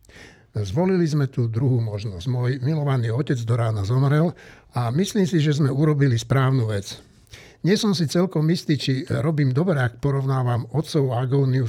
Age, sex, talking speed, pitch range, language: 60-79, male, 160 wpm, 115-145 Hz, Slovak